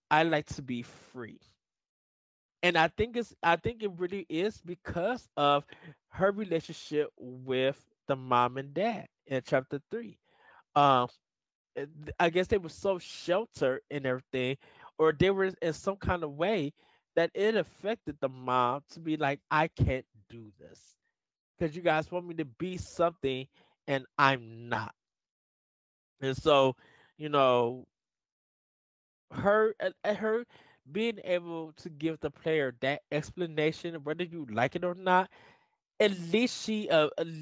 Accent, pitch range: American, 130-170 Hz